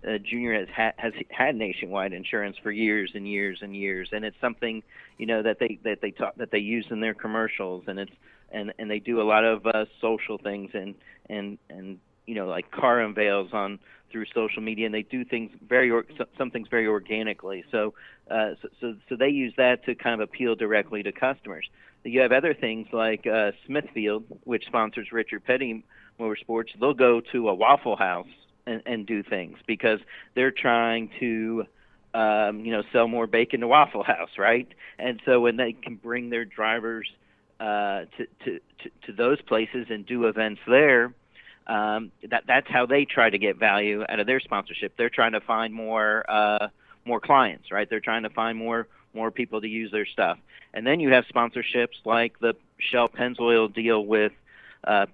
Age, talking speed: 40-59, 195 wpm